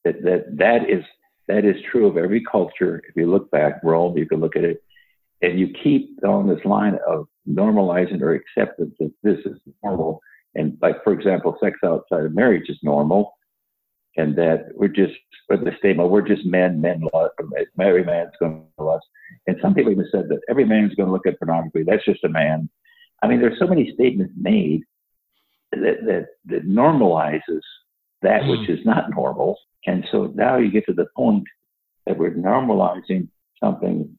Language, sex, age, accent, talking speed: English, male, 60-79, American, 185 wpm